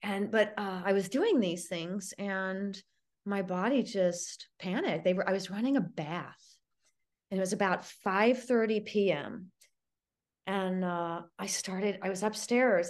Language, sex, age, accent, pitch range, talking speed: English, female, 30-49, American, 175-215 Hz, 160 wpm